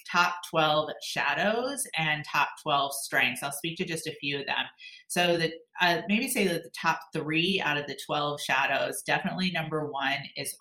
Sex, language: female, English